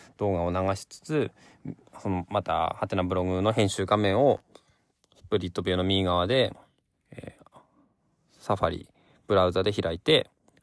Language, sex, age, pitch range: Japanese, male, 20-39, 95-150 Hz